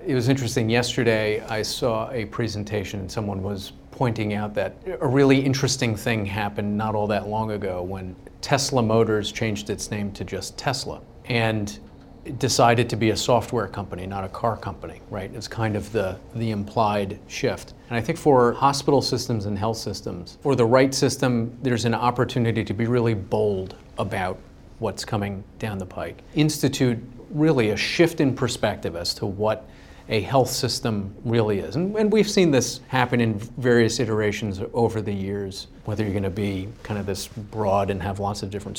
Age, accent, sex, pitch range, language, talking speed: 40-59, American, male, 100-120 Hz, English, 185 wpm